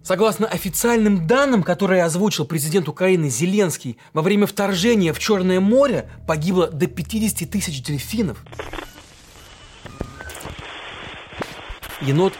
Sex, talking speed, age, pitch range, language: male, 95 wpm, 30-49, 155-205 Hz, Russian